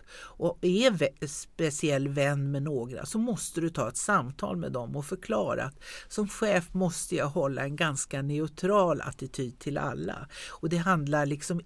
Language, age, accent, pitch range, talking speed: Swedish, 60-79, native, 140-195 Hz, 170 wpm